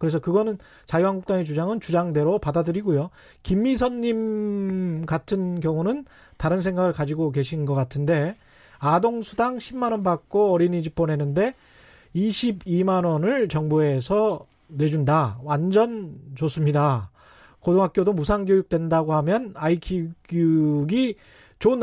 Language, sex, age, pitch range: Korean, male, 30-49, 155-210 Hz